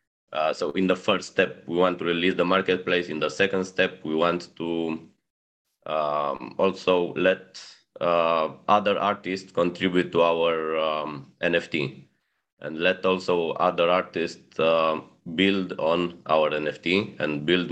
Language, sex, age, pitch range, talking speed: English, male, 20-39, 80-95 Hz, 140 wpm